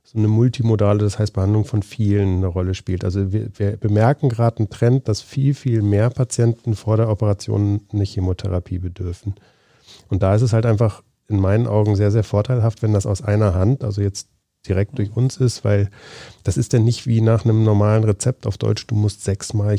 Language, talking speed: German, 205 wpm